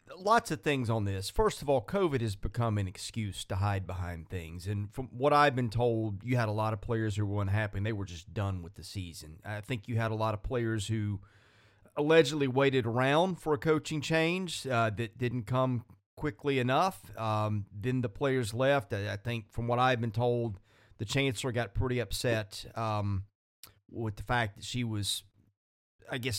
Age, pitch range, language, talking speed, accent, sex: 30-49, 105-135 Hz, English, 200 wpm, American, male